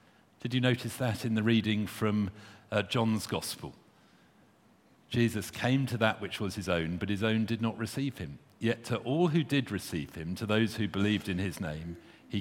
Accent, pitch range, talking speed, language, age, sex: British, 95-115 Hz, 200 wpm, English, 50-69, male